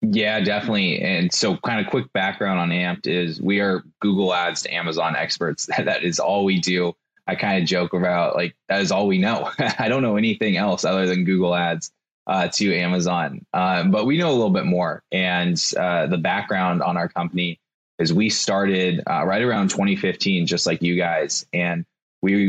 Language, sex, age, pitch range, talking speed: English, male, 20-39, 85-100 Hz, 195 wpm